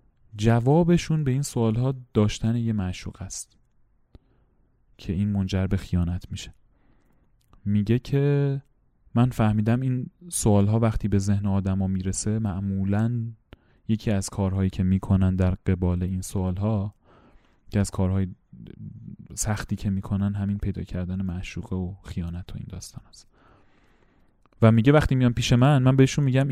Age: 30-49